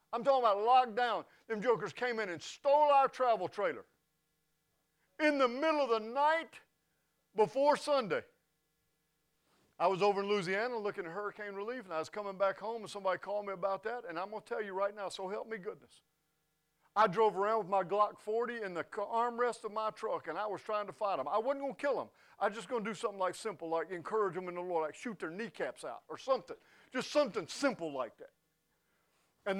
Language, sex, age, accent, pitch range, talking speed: English, male, 50-69, American, 175-240 Hz, 220 wpm